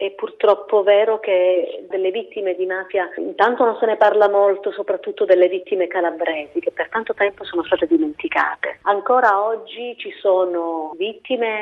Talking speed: 155 wpm